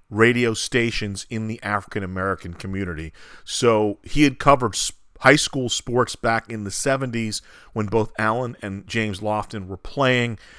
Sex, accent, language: male, American, English